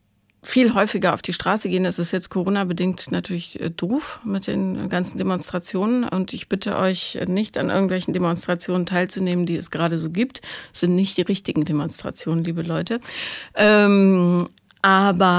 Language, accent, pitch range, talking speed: German, German, 175-220 Hz, 155 wpm